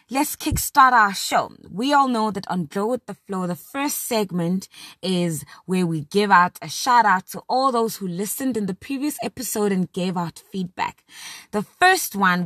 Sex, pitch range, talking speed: female, 185-245 Hz, 195 wpm